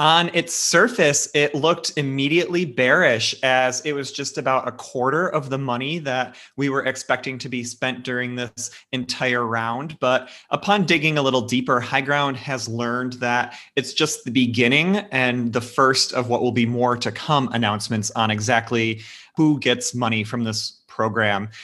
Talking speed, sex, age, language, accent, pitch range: 170 wpm, male, 30-49, English, American, 120-145 Hz